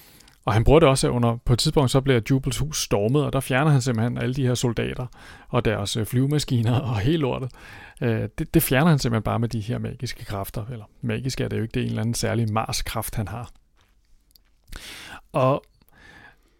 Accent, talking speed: native, 205 wpm